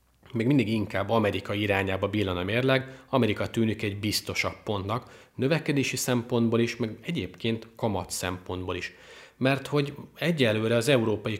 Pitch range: 100-120 Hz